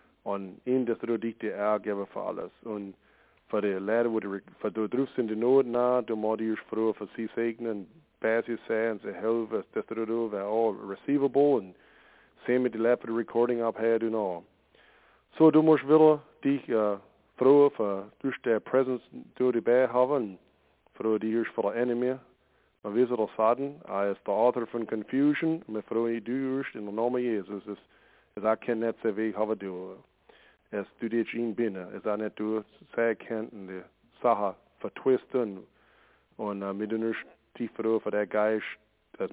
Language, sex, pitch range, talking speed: English, male, 105-125 Hz, 170 wpm